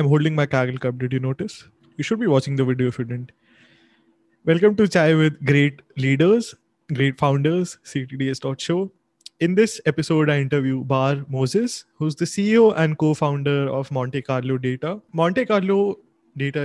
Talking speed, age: 165 wpm, 20-39